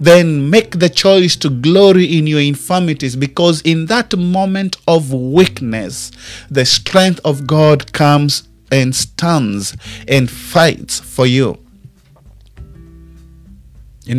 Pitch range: 130-170 Hz